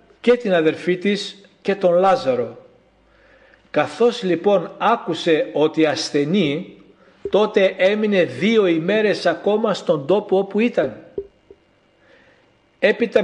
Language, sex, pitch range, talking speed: Greek, male, 160-195 Hz, 100 wpm